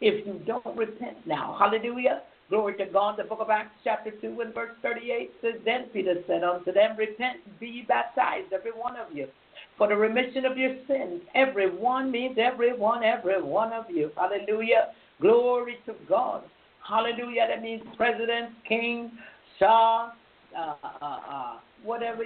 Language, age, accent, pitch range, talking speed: English, 60-79, American, 210-235 Hz, 160 wpm